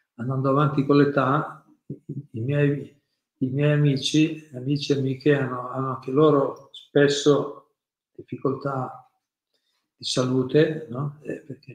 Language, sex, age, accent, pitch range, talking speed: Italian, male, 50-69, native, 130-150 Hz, 110 wpm